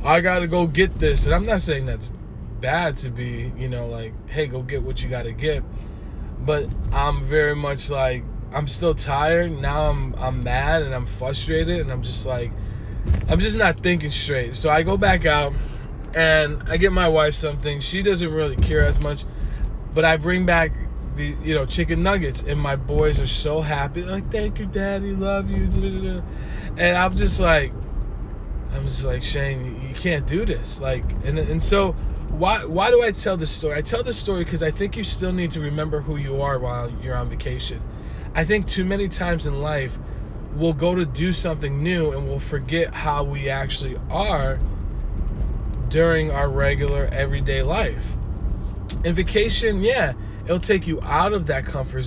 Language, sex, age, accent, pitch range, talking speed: English, male, 20-39, American, 125-165 Hz, 190 wpm